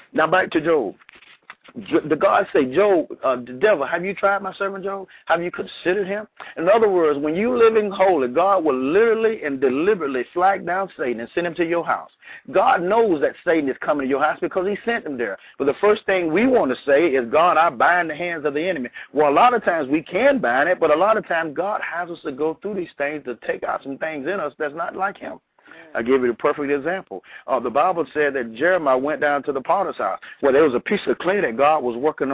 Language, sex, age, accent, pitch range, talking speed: English, male, 50-69, American, 145-200 Hz, 250 wpm